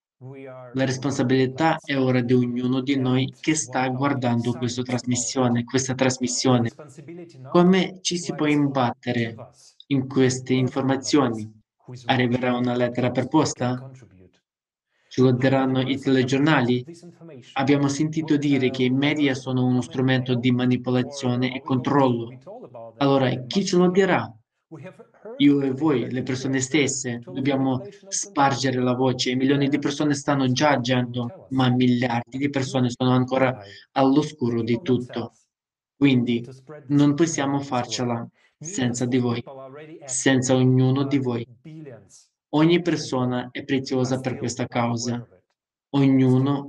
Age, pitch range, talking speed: 20-39, 125-140 Hz, 120 wpm